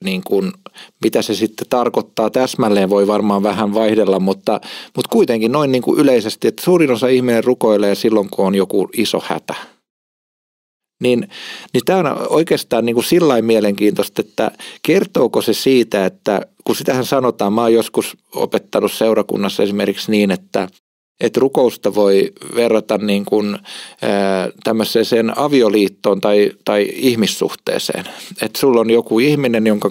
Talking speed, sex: 140 wpm, male